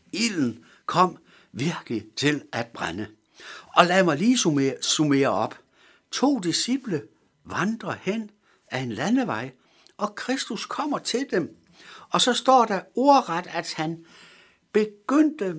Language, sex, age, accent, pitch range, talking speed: Danish, male, 60-79, native, 165-255 Hz, 125 wpm